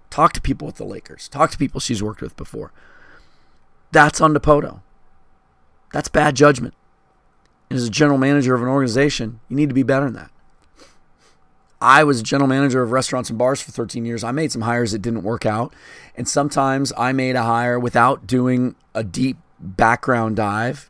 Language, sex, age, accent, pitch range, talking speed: English, male, 30-49, American, 115-150 Hz, 190 wpm